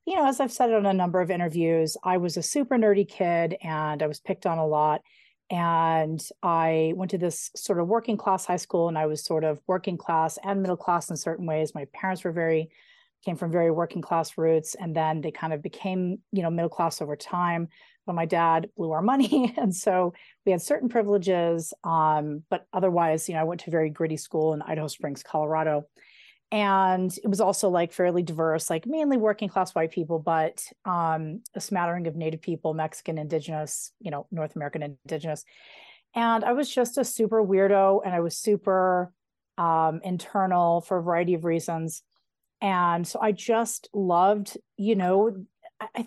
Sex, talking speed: female, 195 wpm